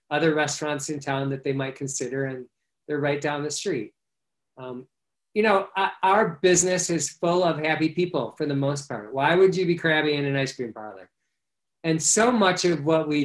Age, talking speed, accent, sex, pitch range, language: 40-59, 200 wpm, American, male, 140-165 Hz, English